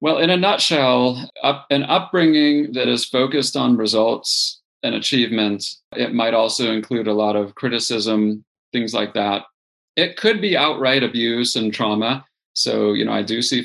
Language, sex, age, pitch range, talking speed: English, male, 30-49, 110-140 Hz, 165 wpm